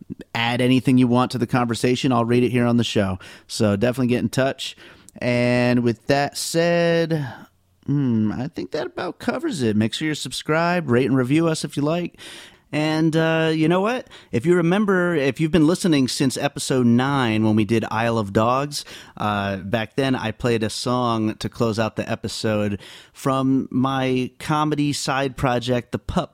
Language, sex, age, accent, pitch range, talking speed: English, male, 30-49, American, 110-135 Hz, 185 wpm